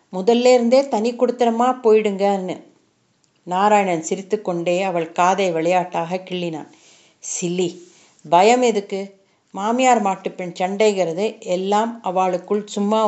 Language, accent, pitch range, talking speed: Tamil, native, 185-235 Hz, 90 wpm